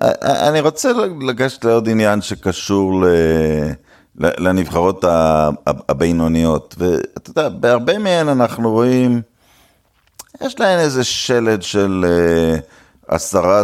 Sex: male